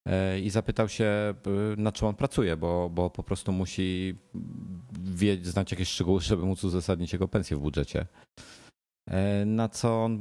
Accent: native